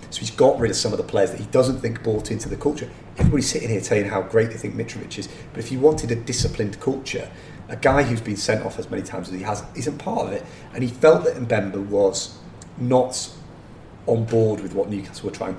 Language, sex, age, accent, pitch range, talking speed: English, male, 30-49, British, 100-125 Hz, 245 wpm